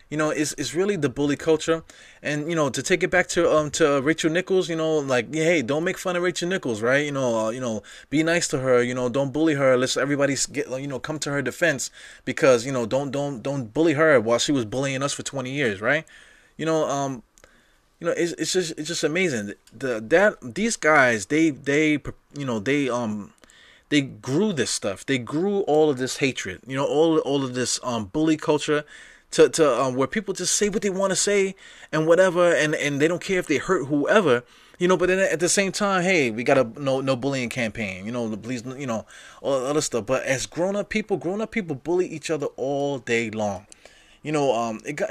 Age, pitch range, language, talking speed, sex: 20-39, 130-185 Hz, English, 235 wpm, male